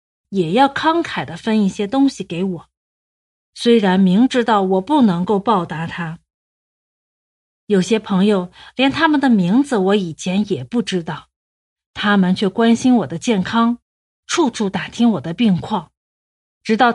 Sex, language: female, Chinese